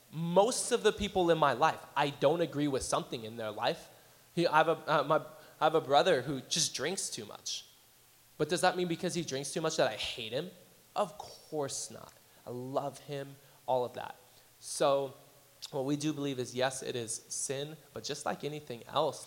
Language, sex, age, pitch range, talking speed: English, male, 20-39, 120-155 Hz, 210 wpm